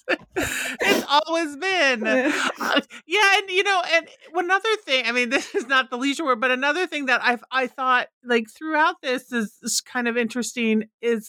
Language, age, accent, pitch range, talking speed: English, 40-59, American, 200-260 Hz, 185 wpm